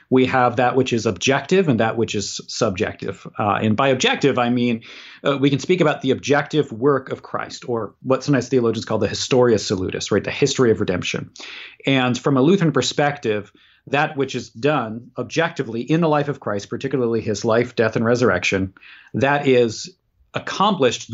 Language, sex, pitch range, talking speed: English, male, 115-140 Hz, 185 wpm